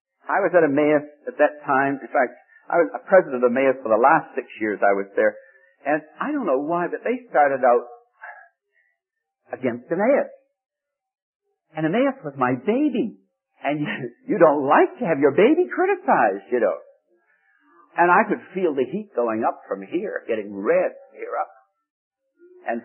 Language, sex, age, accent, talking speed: English, male, 60-79, American, 175 wpm